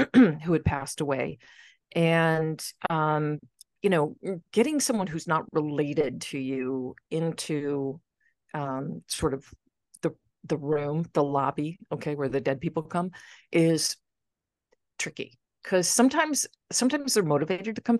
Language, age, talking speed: English, 40-59, 130 wpm